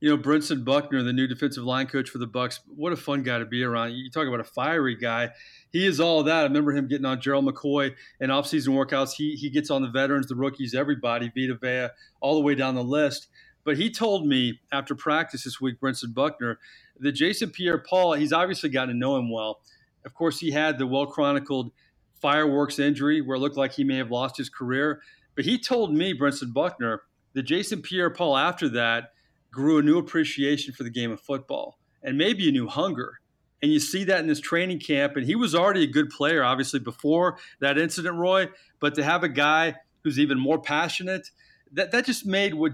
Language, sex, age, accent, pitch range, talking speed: English, male, 40-59, American, 135-160 Hz, 215 wpm